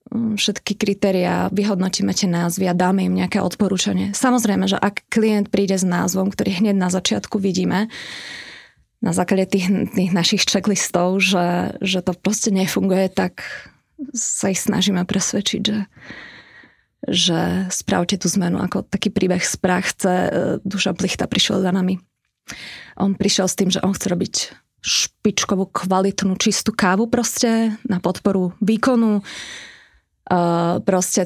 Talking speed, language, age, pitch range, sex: 135 wpm, Slovak, 20-39, 185-205 Hz, female